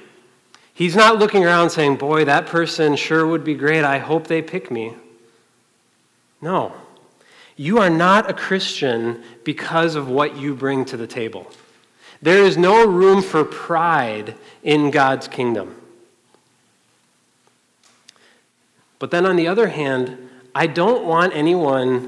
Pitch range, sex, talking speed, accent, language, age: 135-170 Hz, male, 135 wpm, American, English, 40-59